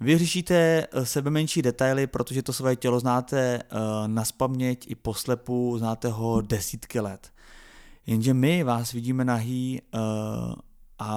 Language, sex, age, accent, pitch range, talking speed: Czech, male, 20-39, native, 115-135 Hz, 130 wpm